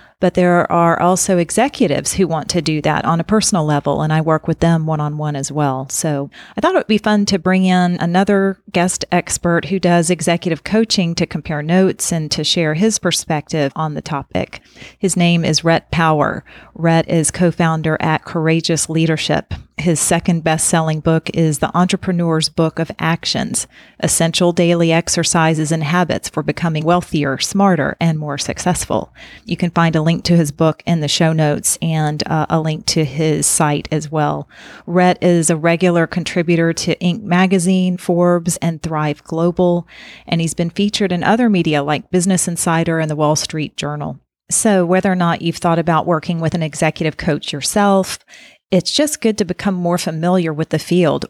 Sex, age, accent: female, 40-59, American